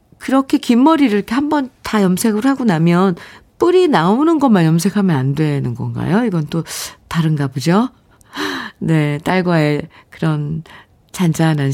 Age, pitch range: 40-59, 150-215 Hz